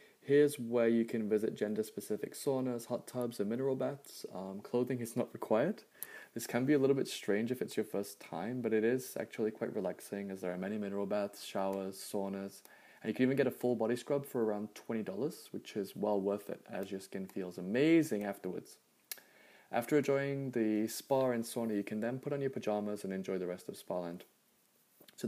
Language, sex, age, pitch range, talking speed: English, male, 20-39, 105-130 Hz, 205 wpm